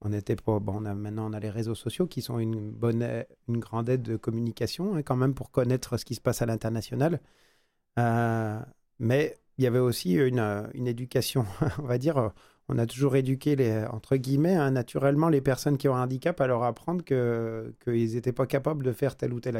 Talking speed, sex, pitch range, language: 220 wpm, male, 115-135 Hz, French